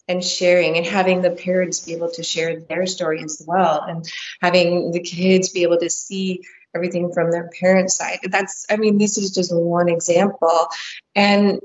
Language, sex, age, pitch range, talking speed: English, female, 20-39, 180-200 Hz, 185 wpm